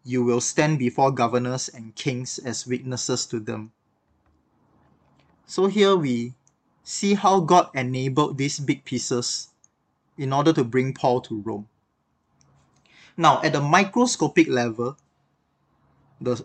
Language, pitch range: English, 120-150 Hz